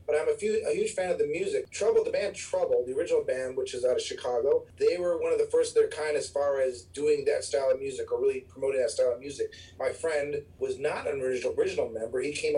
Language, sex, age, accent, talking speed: English, male, 40-59, American, 260 wpm